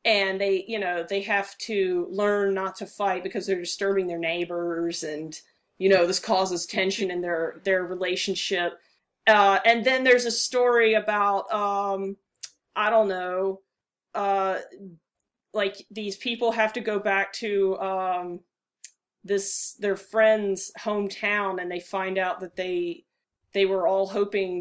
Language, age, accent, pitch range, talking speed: English, 30-49, American, 180-205 Hz, 150 wpm